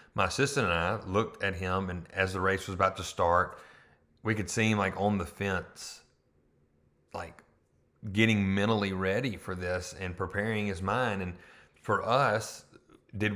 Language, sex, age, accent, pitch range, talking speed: English, male, 30-49, American, 95-110 Hz, 165 wpm